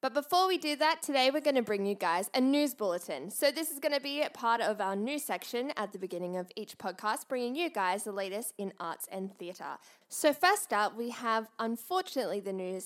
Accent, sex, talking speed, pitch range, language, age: Australian, female, 230 wpm, 195-280 Hz, English, 10-29